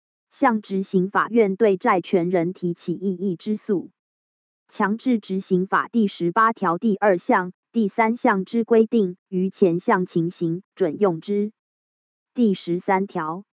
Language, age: Chinese, 20-39